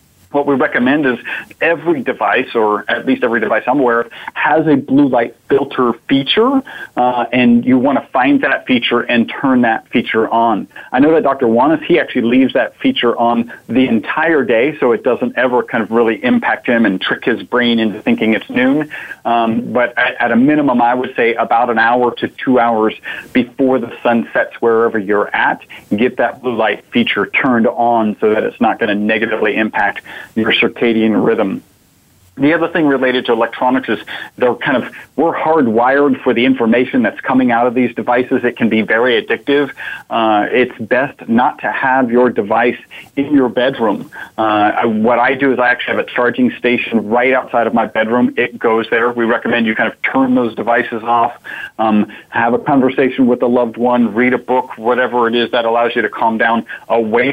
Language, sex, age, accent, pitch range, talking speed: English, male, 40-59, American, 115-135 Hz, 195 wpm